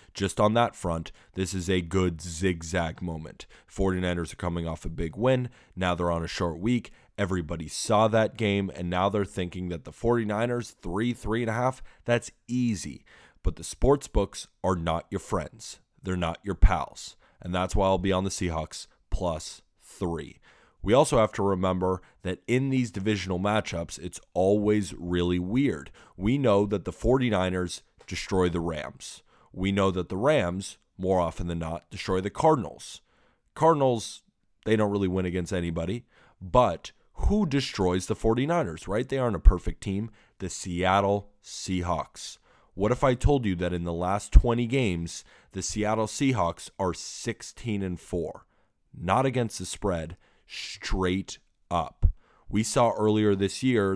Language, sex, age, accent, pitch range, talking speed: English, male, 30-49, American, 90-110 Hz, 160 wpm